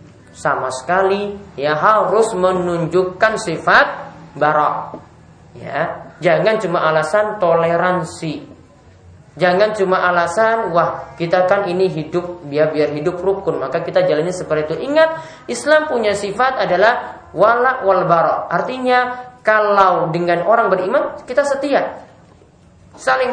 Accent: Indonesian